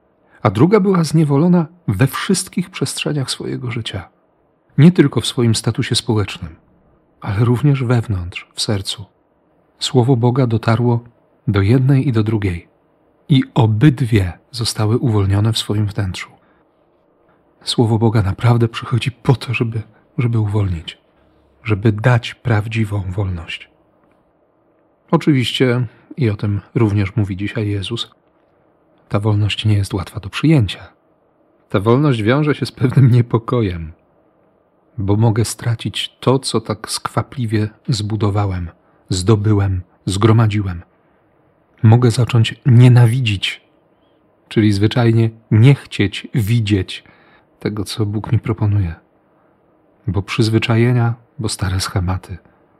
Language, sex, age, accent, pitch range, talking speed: Polish, male, 40-59, native, 105-130 Hz, 110 wpm